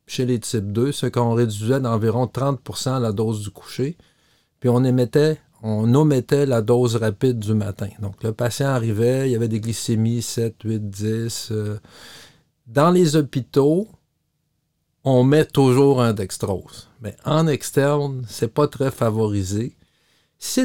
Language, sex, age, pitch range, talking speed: French, male, 50-69, 110-145 Hz, 150 wpm